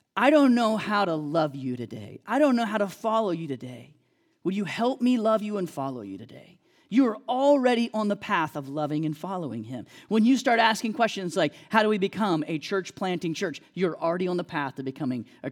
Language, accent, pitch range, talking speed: English, American, 140-205 Hz, 230 wpm